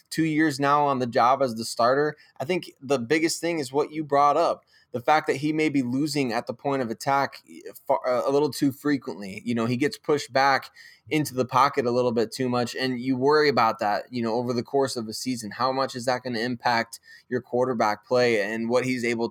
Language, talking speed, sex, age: English, 235 wpm, male, 20-39